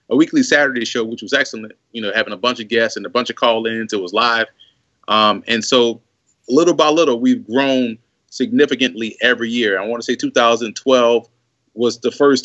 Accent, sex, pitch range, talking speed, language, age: American, male, 115-130 Hz, 200 wpm, English, 30-49